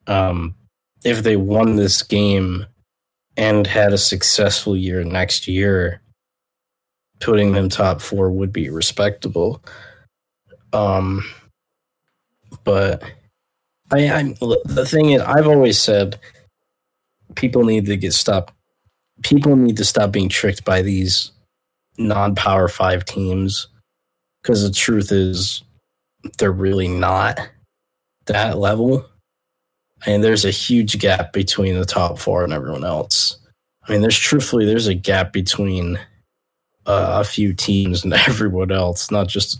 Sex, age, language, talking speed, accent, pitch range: male, 20-39, English, 130 wpm, American, 90-110 Hz